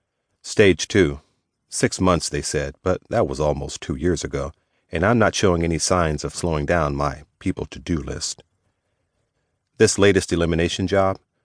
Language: English